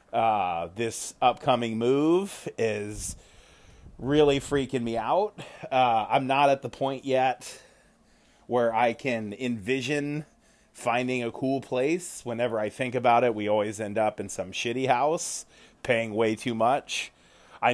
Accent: American